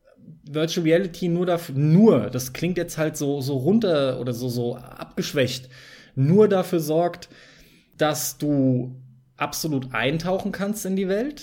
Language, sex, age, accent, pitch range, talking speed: German, male, 20-39, German, 130-180 Hz, 140 wpm